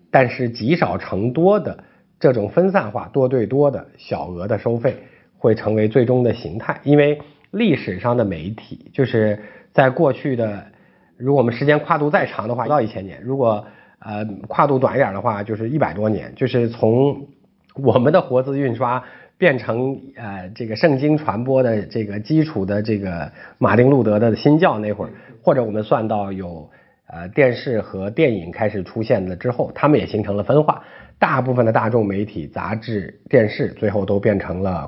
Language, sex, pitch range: Chinese, male, 105-140 Hz